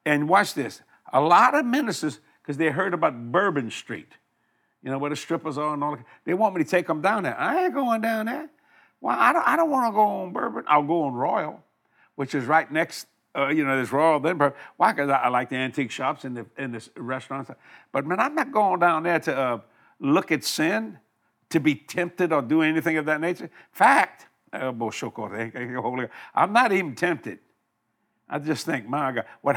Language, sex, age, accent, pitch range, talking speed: English, male, 60-79, American, 135-185 Hz, 210 wpm